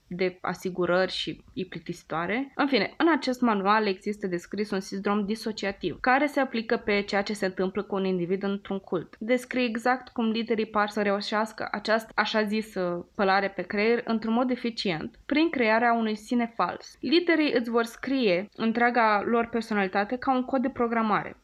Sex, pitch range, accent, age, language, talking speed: female, 200-240 Hz, native, 20-39, Romanian, 170 wpm